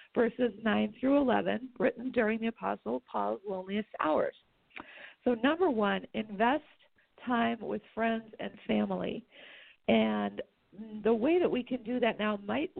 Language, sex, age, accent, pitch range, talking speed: English, female, 50-69, American, 210-250 Hz, 140 wpm